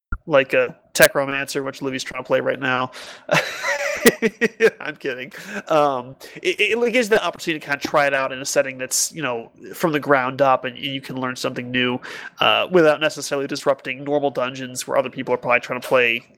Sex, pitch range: male, 130-170 Hz